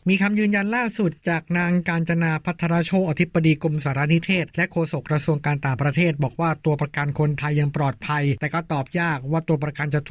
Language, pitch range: Thai, 145-170 Hz